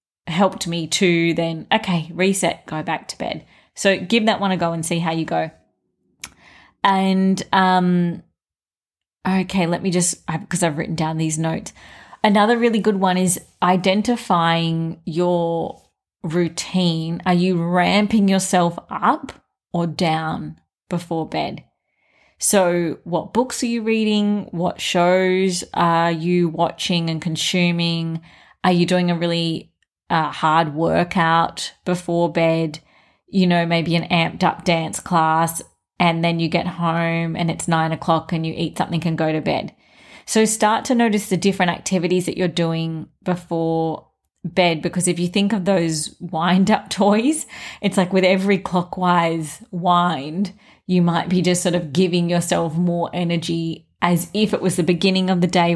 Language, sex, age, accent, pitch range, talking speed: English, female, 20-39, Australian, 165-185 Hz, 155 wpm